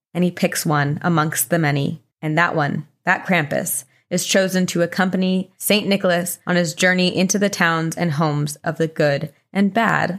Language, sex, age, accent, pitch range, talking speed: English, female, 20-39, American, 170-200 Hz, 185 wpm